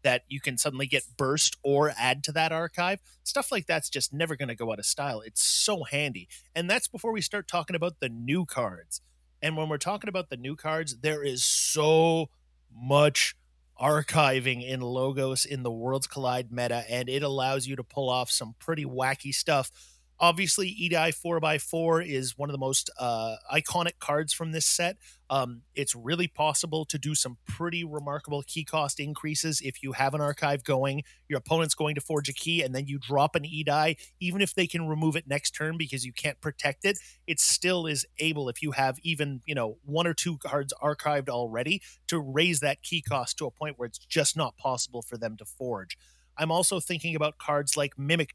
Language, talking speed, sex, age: English, 205 wpm, male, 30-49